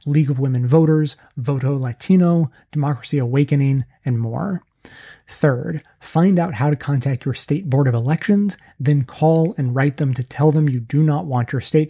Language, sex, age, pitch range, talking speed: English, male, 30-49, 125-155 Hz, 175 wpm